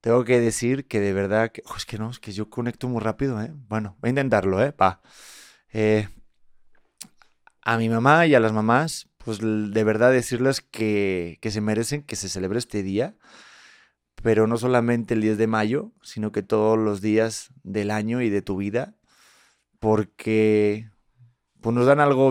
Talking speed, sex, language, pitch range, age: 185 wpm, male, Spanish, 105-120 Hz, 30-49